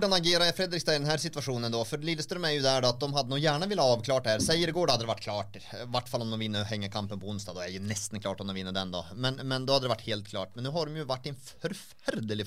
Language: English